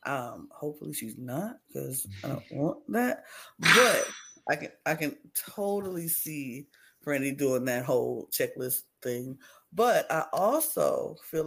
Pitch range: 140-170 Hz